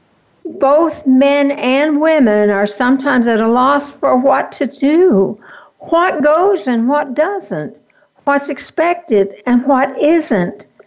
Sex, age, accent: female, 60-79, American